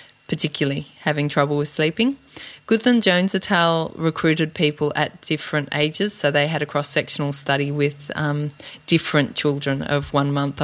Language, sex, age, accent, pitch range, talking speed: English, female, 20-39, Australian, 145-175 Hz, 160 wpm